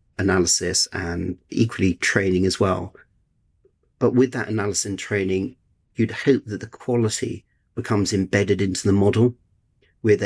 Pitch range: 95-115 Hz